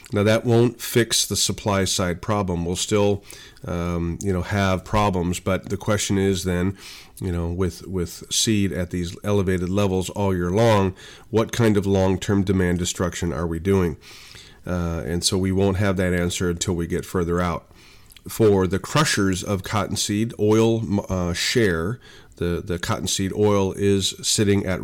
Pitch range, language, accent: 90-105 Hz, English, American